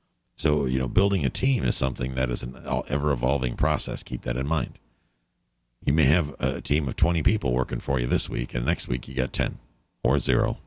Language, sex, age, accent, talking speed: English, male, 50-69, American, 215 wpm